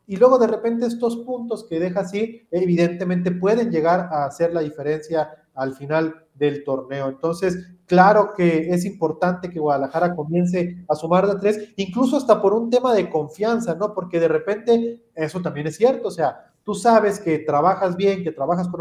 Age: 40-59